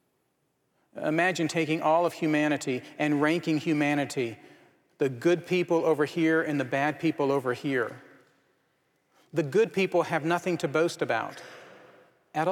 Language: English